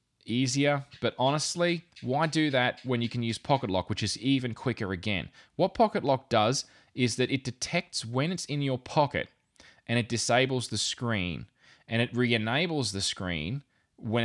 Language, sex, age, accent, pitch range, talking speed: English, male, 20-39, Australian, 100-130 Hz, 175 wpm